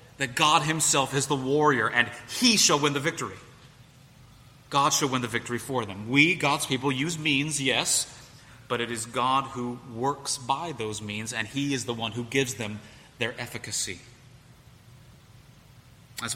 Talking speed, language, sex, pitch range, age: 165 wpm, English, male, 120-140 Hz, 30-49